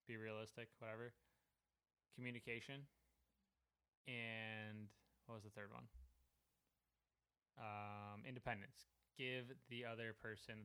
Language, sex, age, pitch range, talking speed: English, male, 20-39, 105-120 Hz, 90 wpm